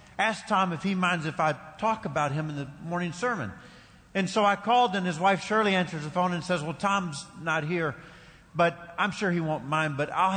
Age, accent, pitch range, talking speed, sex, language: 50-69, American, 145-185 Hz, 225 wpm, male, English